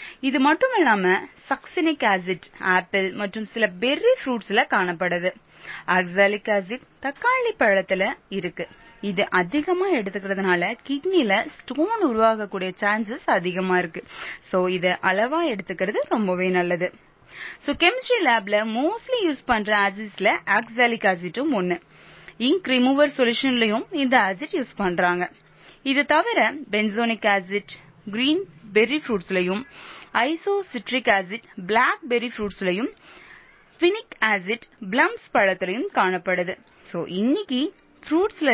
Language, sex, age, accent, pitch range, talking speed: Tamil, female, 20-39, native, 195-290 Hz, 100 wpm